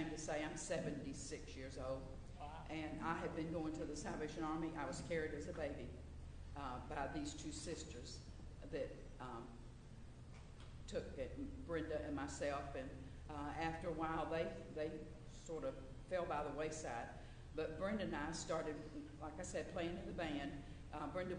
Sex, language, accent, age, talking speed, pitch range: female, English, American, 50-69, 170 wpm, 140-165 Hz